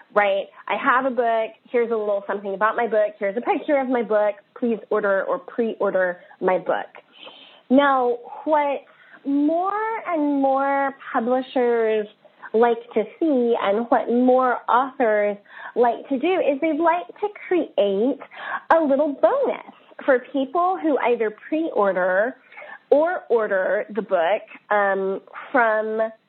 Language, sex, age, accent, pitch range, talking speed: English, female, 20-39, American, 200-255 Hz, 135 wpm